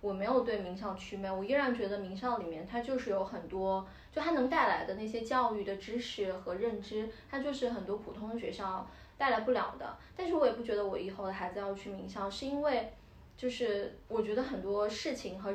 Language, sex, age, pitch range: Chinese, female, 20-39, 215-280 Hz